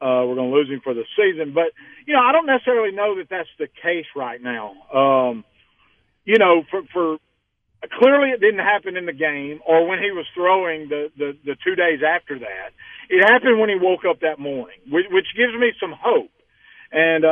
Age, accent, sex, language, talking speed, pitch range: 50-69, American, male, English, 210 wpm, 145-190 Hz